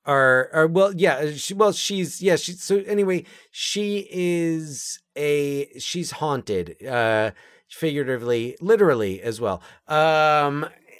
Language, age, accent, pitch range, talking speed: English, 30-49, American, 125-155 Hz, 120 wpm